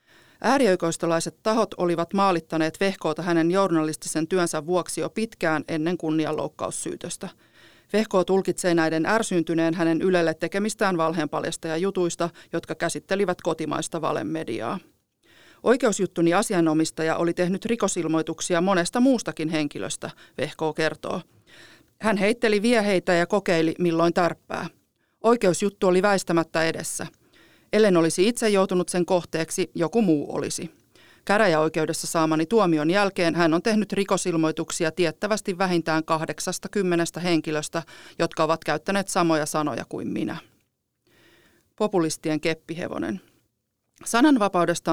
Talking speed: 105 wpm